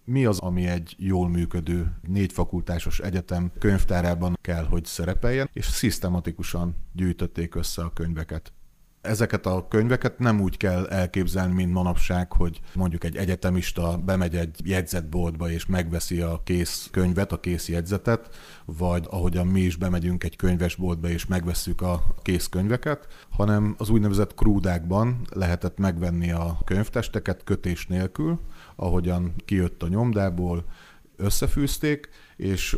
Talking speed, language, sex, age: 125 wpm, Hungarian, male, 30-49